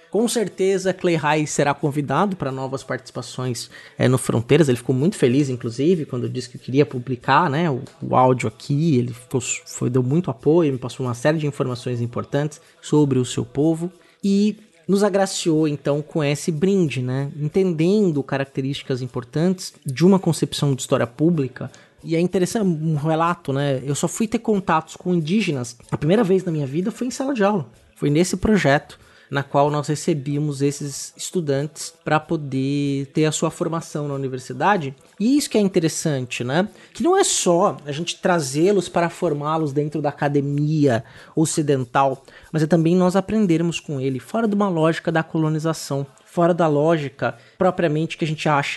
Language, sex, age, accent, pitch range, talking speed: Portuguese, male, 20-39, Brazilian, 135-170 Hz, 175 wpm